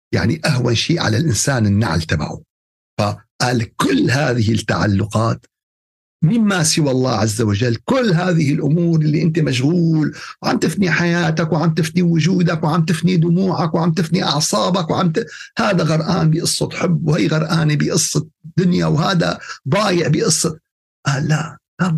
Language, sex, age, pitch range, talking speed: Arabic, male, 50-69, 115-165 Hz, 135 wpm